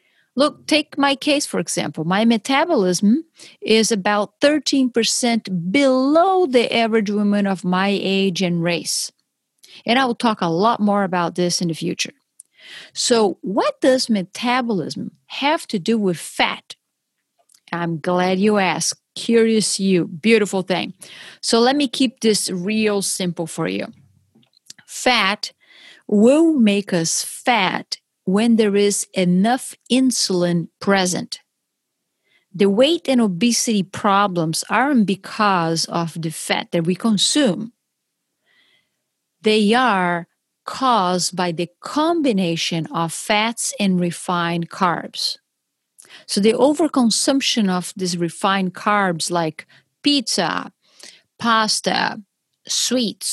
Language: English